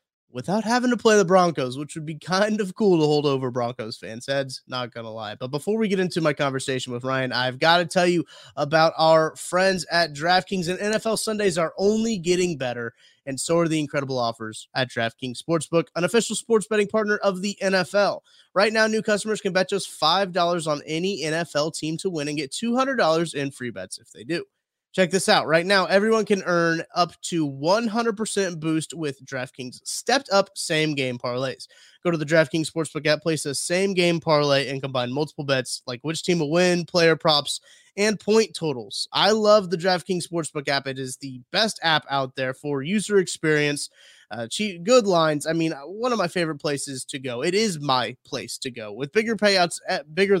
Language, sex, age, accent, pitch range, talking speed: English, male, 30-49, American, 140-195 Hz, 205 wpm